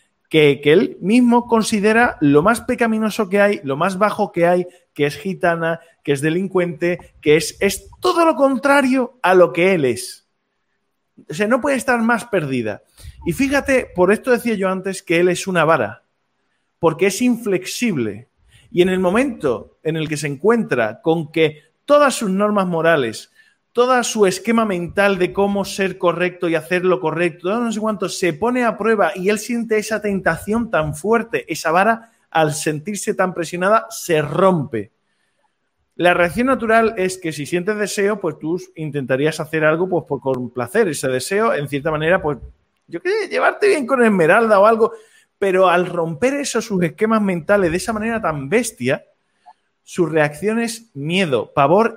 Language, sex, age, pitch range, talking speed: Spanish, male, 30-49, 165-225 Hz, 175 wpm